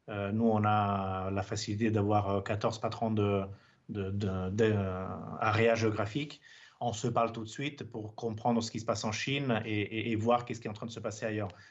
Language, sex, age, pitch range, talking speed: French, male, 30-49, 110-125 Hz, 190 wpm